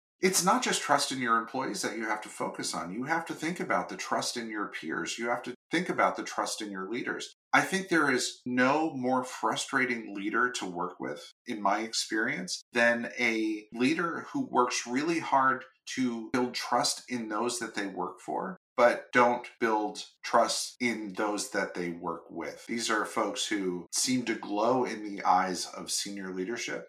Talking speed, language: 190 wpm, English